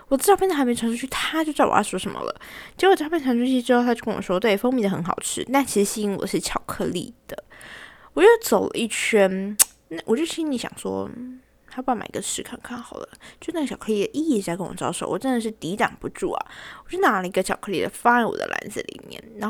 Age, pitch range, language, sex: 10-29, 195-275 Hz, Chinese, female